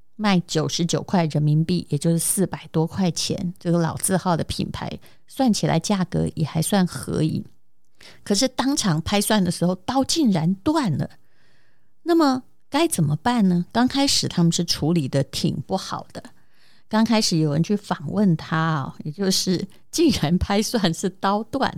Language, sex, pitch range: Chinese, female, 170-235 Hz